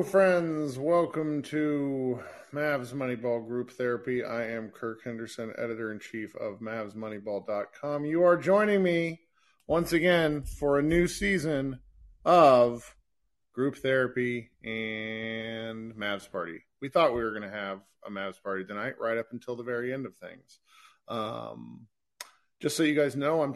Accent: American